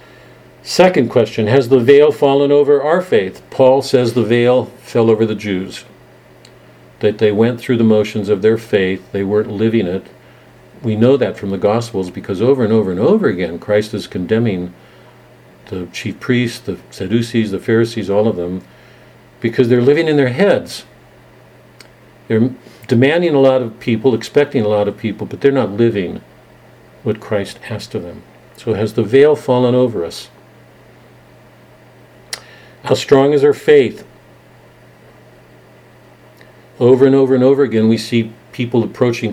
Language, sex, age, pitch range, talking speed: English, male, 50-69, 110-130 Hz, 160 wpm